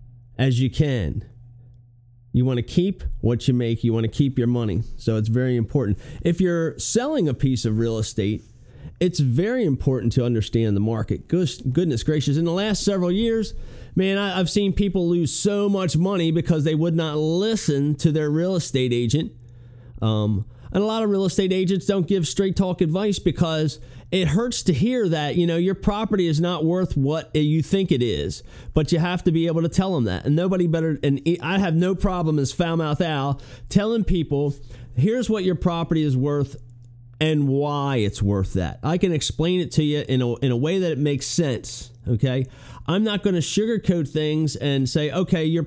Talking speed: 200 wpm